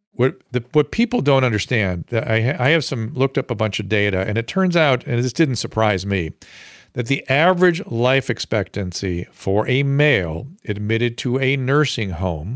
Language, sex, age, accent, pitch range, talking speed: English, male, 50-69, American, 110-150 Hz, 175 wpm